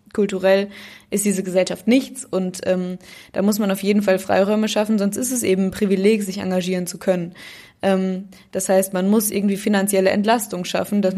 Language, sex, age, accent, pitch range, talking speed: German, female, 20-39, German, 190-215 Hz, 190 wpm